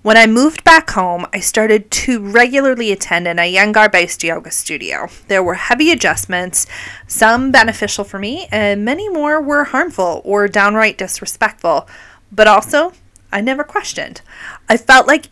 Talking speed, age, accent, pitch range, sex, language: 155 wpm, 30-49, American, 175-255 Hz, female, English